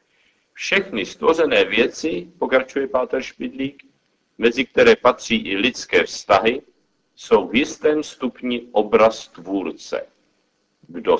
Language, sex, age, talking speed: Czech, male, 50-69, 100 wpm